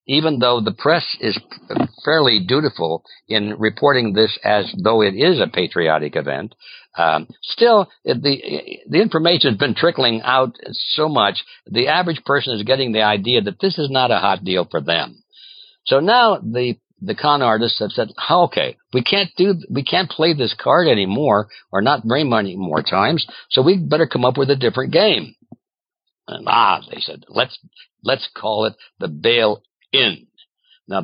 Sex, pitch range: male, 110-180 Hz